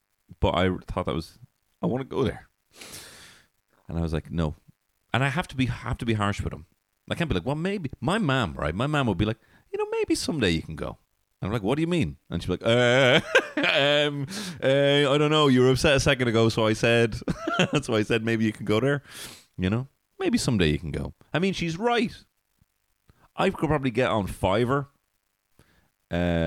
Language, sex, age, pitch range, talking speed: English, male, 30-49, 90-130 Hz, 230 wpm